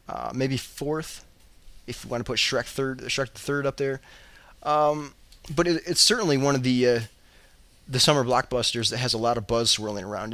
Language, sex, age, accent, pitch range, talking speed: English, male, 20-39, American, 115-160 Hz, 205 wpm